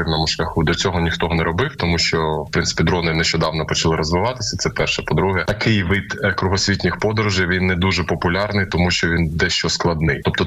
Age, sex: 20-39, male